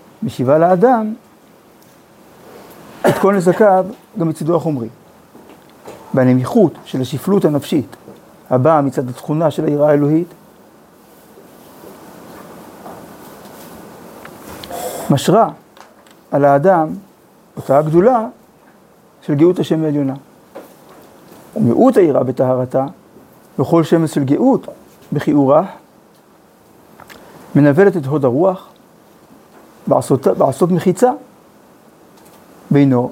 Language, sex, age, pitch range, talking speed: Hebrew, male, 50-69, 145-200 Hz, 80 wpm